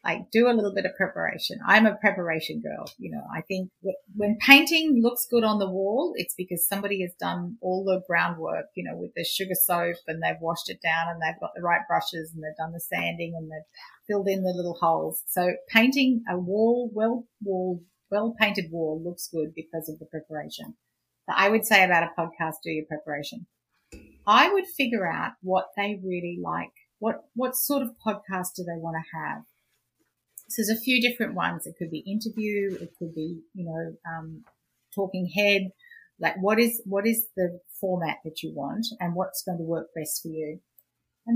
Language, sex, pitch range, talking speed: English, female, 165-220 Hz, 195 wpm